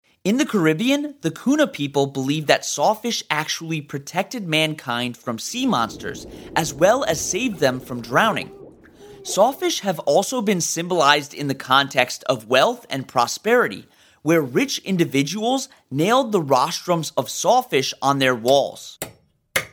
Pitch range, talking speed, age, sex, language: 145-220 Hz, 135 wpm, 30-49, male, English